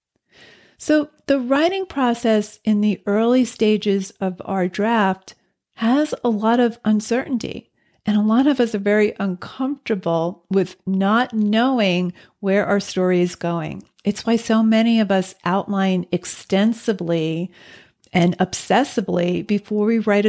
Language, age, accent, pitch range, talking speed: English, 40-59, American, 185-225 Hz, 135 wpm